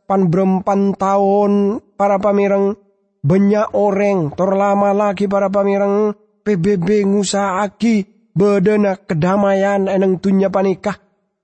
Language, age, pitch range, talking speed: English, 20-39, 195-250 Hz, 95 wpm